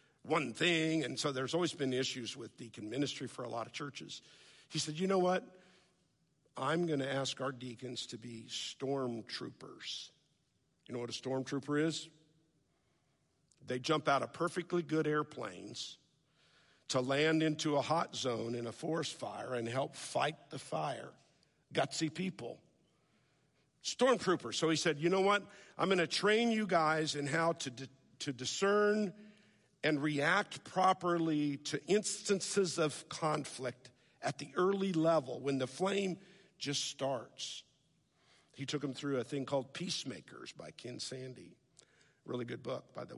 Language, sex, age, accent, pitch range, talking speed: English, male, 50-69, American, 135-180 Hz, 155 wpm